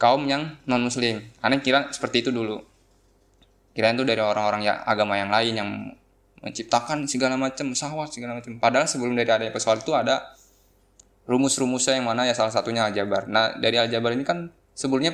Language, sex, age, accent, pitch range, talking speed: Indonesian, male, 10-29, native, 100-130 Hz, 180 wpm